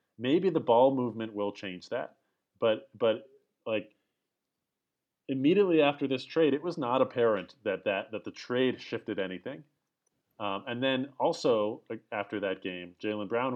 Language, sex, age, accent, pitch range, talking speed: English, male, 30-49, American, 100-135 Hz, 150 wpm